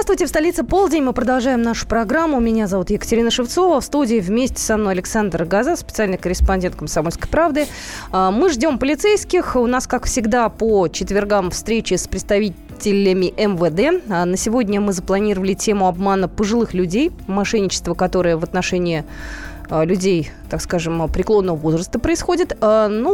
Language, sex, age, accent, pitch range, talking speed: Russian, female, 20-39, native, 190-255 Hz, 145 wpm